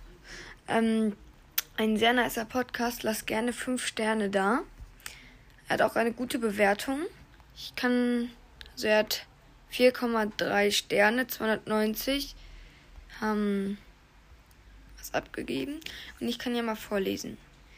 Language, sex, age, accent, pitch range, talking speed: German, female, 20-39, German, 210-245 Hz, 115 wpm